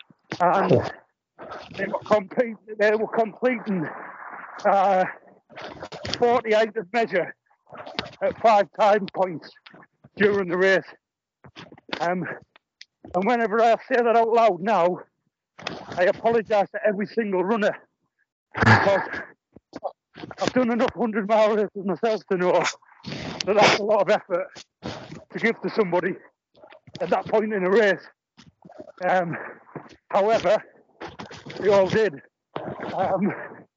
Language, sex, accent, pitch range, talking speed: English, male, British, 185-225 Hz, 110 wpm